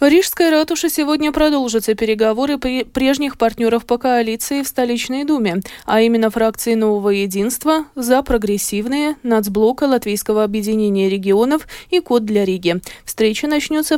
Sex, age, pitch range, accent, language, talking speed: female, 20-39, 210-285 Hz, native, Russian, 130 wpm